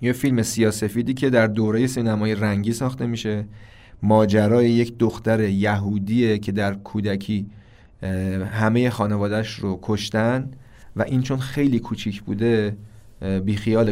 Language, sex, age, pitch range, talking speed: Persian, male, 30-49, 100-125 Hz, 125 wpm